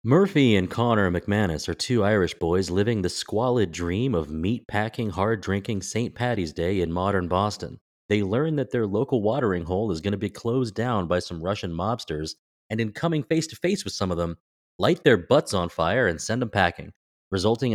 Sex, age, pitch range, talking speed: male, 30-49, 90-125 Hz, 205 wpm